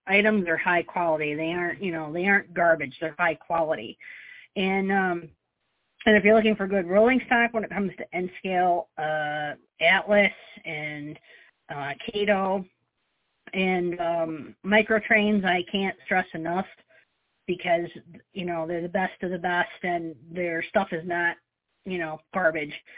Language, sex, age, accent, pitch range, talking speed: English, female, 40-59, American, 165-200 Hz, 155 wpm